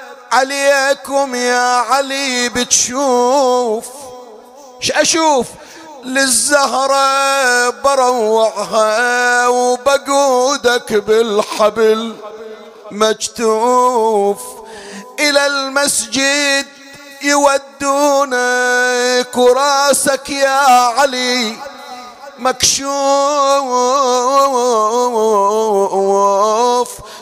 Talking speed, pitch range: 40 wpm, 225-275 Hz